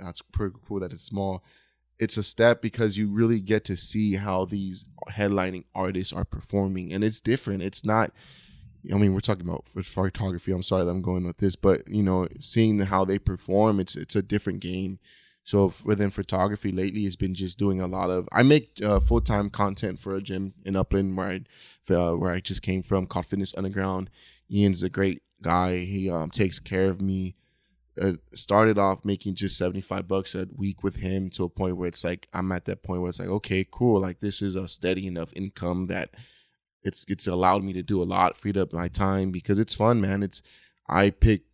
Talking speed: 210 wpm